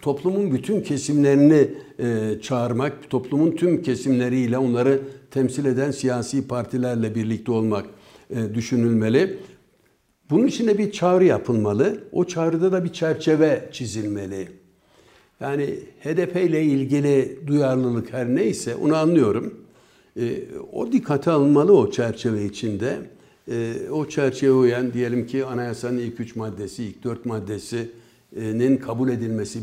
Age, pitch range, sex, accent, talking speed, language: 60-79, 115-140 Hz, male, native, 115 wpm, Turkish